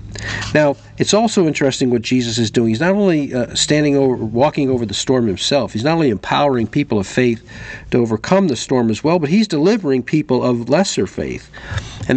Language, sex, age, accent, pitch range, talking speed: English, male, 50-69, American, 125-190 Hz, 195 wpm